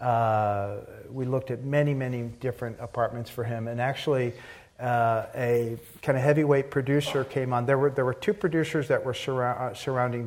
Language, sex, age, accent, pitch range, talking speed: English, male, 40-59, American, 115-135 Hz, 175 wpm